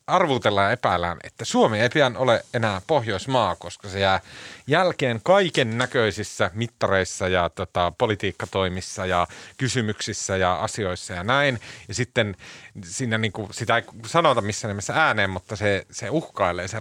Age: 30-49